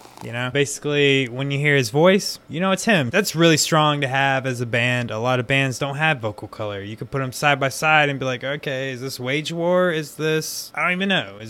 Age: 20-39